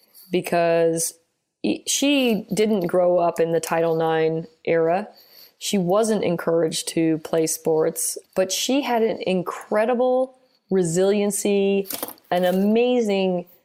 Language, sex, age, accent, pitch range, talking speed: English, female, 30-49, American, 175-230 Hz, 105 wpm